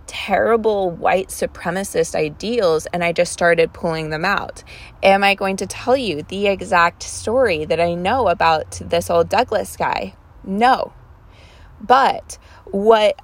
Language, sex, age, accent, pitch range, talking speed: English, female, 20-39, American, 155-195 Hz, 140 wpm